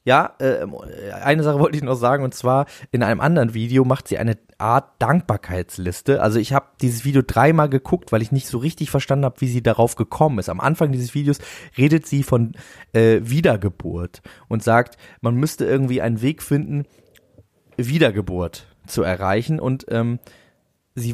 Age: 20-39